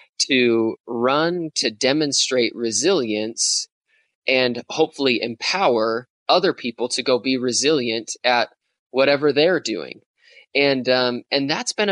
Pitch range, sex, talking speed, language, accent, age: 115-145 Hz, male, 115 wpm, English, American, 20-39